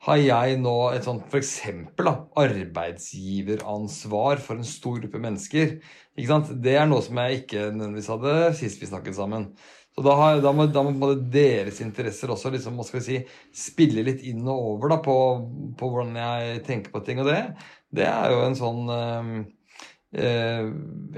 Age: 30-49